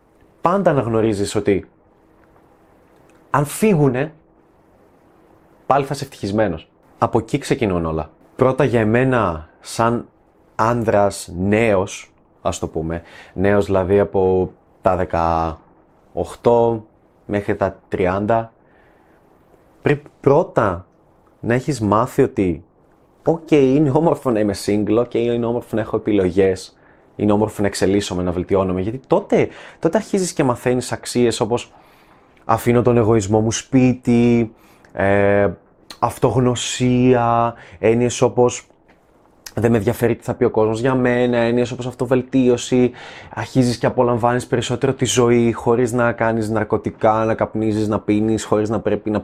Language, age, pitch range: Greek, 20-39, 100-125 Hz